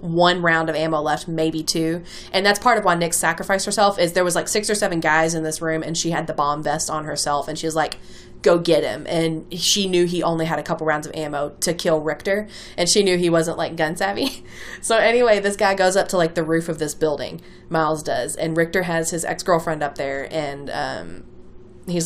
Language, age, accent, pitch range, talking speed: English, 20-39, American, 160-195 Hz, 240 wpm